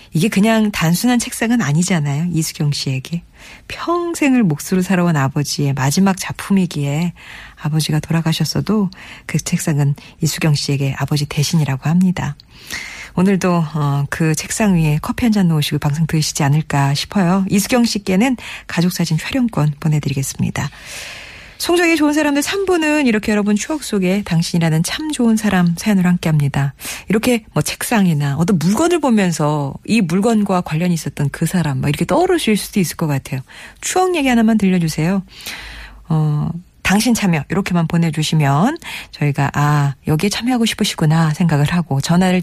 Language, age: Korean, 40-59